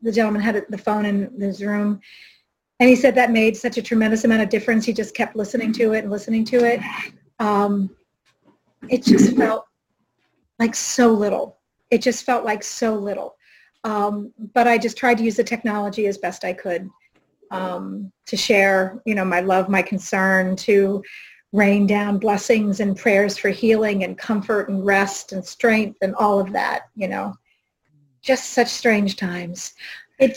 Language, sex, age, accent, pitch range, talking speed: English, female, 40-59, American, 205-245 Hz, 175 wpm